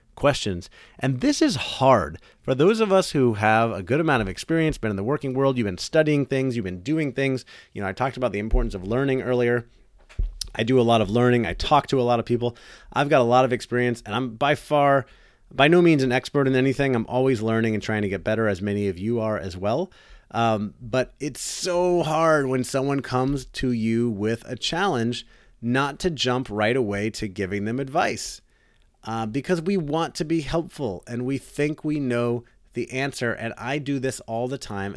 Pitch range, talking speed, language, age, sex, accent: 110-135 Hz, 220 wpm, English, 30-49, male, American